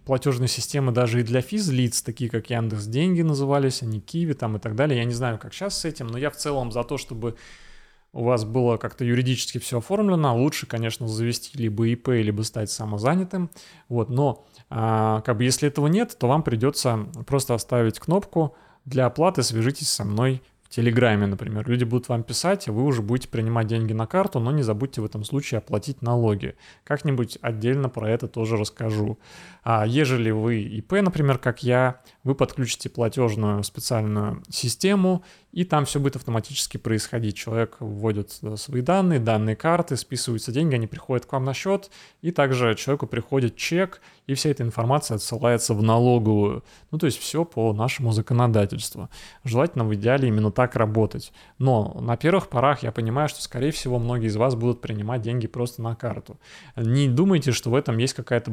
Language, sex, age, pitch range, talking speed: Russian, male, 20-39, 115-140 Hz, 180 wpm